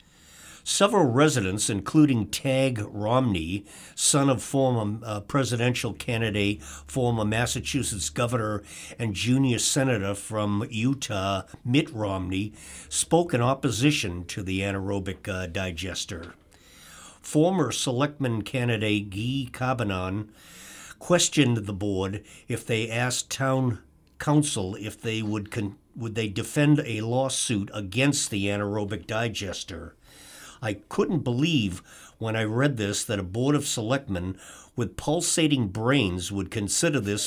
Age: 50-69